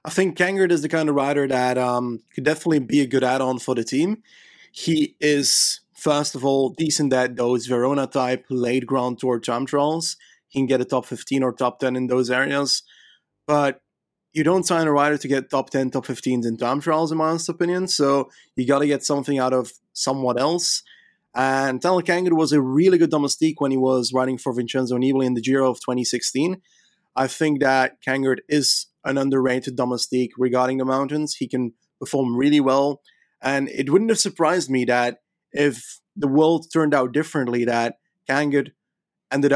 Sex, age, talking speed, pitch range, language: male, 30-49, 190 wpm, 125-150 Hz, English